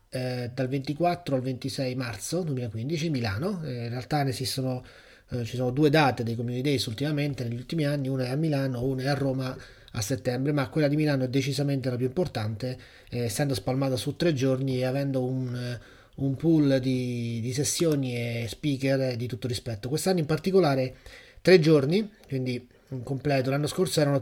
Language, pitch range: Italian, 130-150 Hz